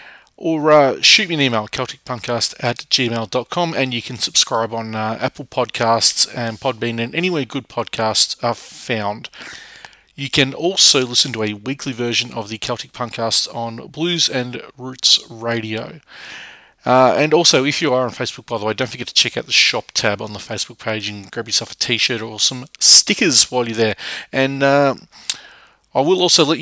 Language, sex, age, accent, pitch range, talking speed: English, male, 30-49, Australian, 115-140 Hz, 185 wpm